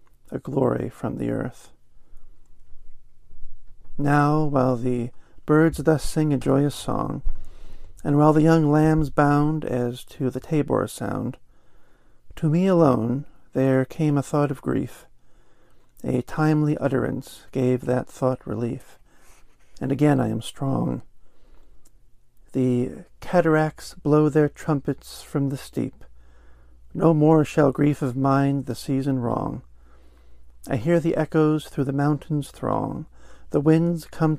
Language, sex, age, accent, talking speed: English, male, 50-69, American, 130 wpm